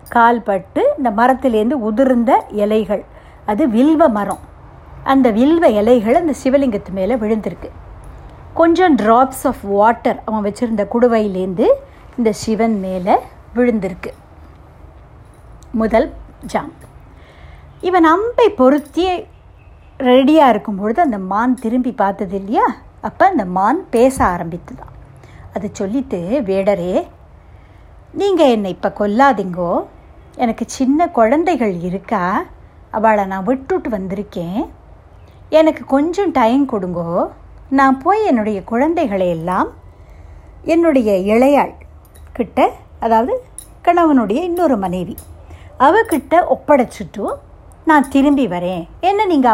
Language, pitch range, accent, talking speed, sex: Tamil, 195-285 Hz, native, 95 wpm, female